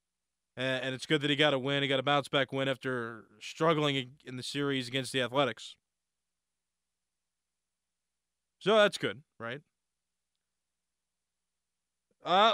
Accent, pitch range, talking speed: American, 125-160 Hz, 125 wpm